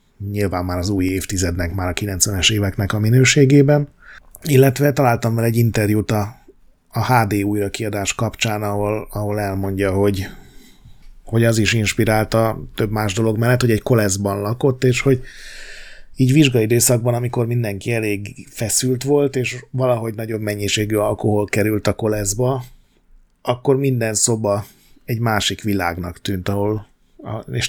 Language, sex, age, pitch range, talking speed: Hungarian, male, 30-49, 105-125 Hz, 140 wpm